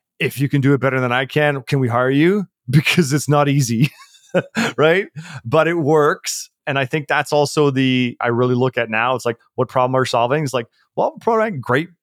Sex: male